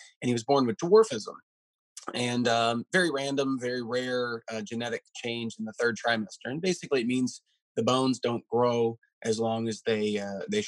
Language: English